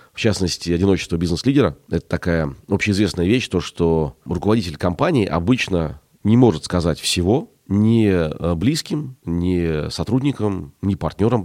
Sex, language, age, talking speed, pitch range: male, Russian, 30-49, 125 wpm, 85-115 Hz